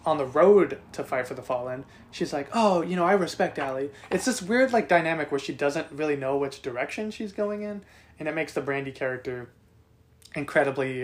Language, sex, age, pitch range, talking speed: English, male, 20-39, 135-175 Hz, 205 wpm